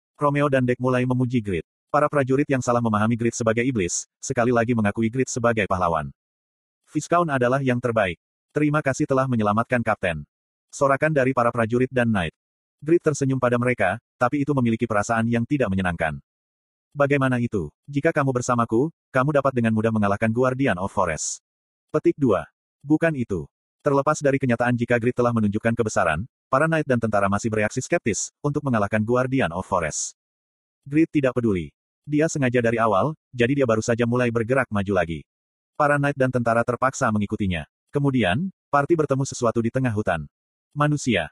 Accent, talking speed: native, 165 wpm